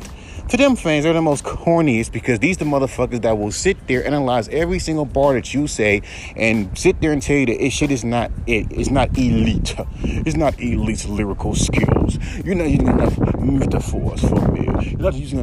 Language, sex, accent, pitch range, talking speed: English, male, American, 95-140 Hz, 205 wpm